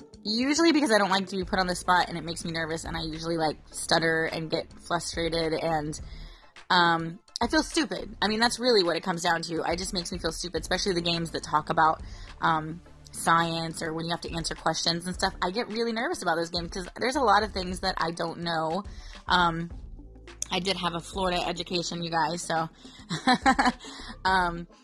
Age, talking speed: 20-39, 215 wpm